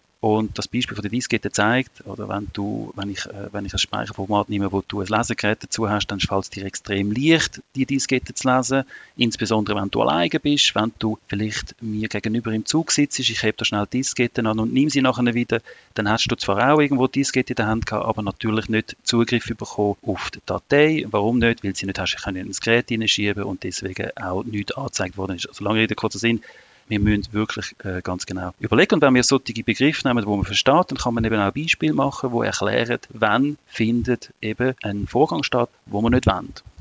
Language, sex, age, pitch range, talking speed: German, male, 40-59, 100-125 Hz, 220 wpm